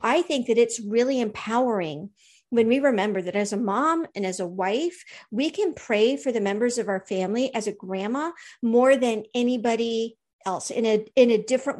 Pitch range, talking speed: 205-255 Hz, 195 wpm